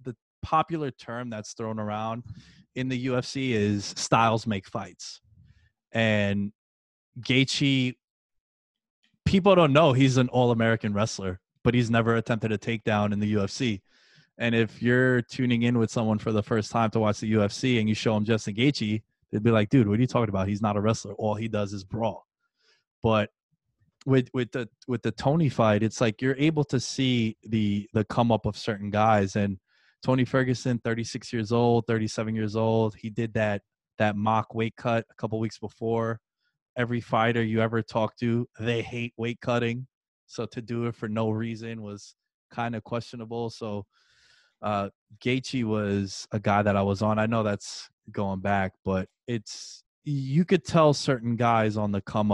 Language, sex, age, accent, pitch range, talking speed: English, male, 20-39, American, 105-125 Hz, 180 wpm